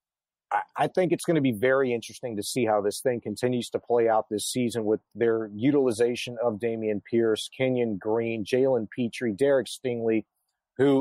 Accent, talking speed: American, 175 wpm